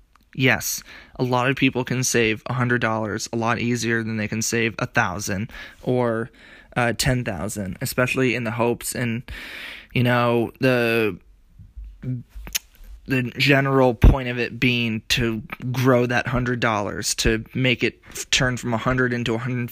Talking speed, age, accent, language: 160 wpm, 20-39, American, English